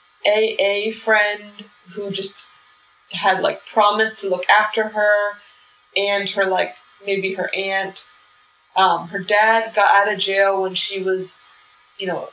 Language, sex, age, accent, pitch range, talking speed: English, female, 20-39, American, 190-210 Hz, 140 wpm